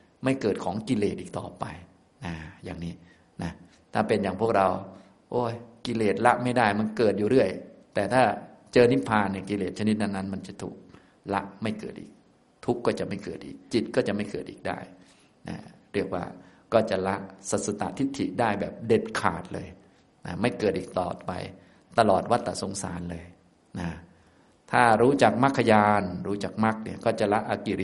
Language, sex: Thai, male